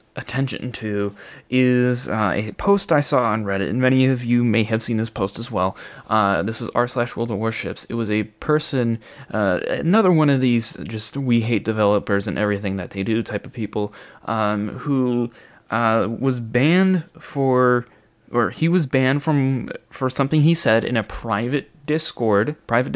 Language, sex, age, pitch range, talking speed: English, male, 20-39, 105-135 Hz, 185 wpm